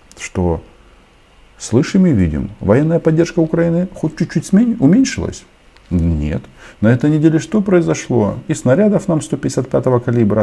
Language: Russian